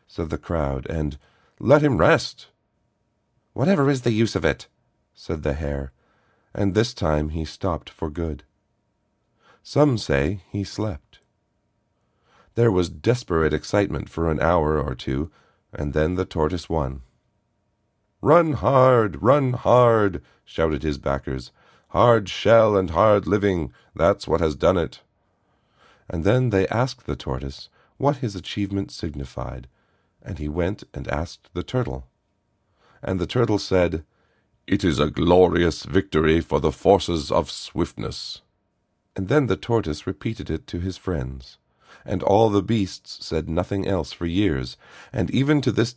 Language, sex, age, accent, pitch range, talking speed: English, male, 40-59, American, 75-110 Hz, 145 wpm